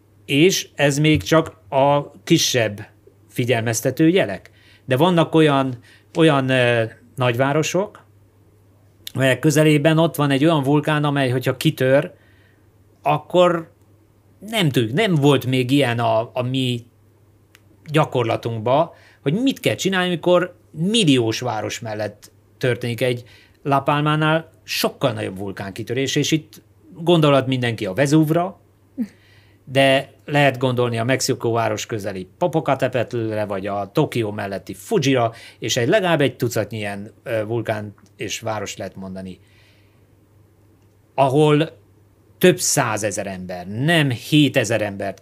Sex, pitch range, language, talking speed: male, 105-145 Hz, Hungarian, 115 wpm